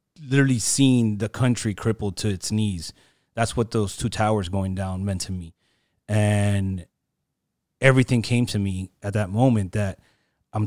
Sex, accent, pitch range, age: male, American, 100-120 Hz, 30-49